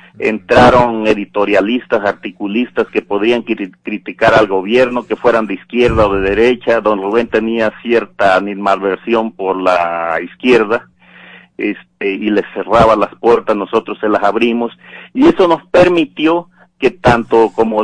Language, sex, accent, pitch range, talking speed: Spanish, male, Mexican, 105-125 Hz, 130 wpm